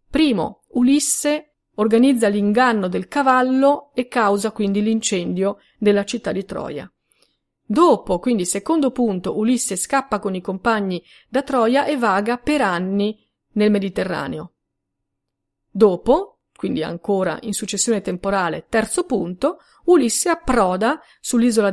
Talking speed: 115 wpm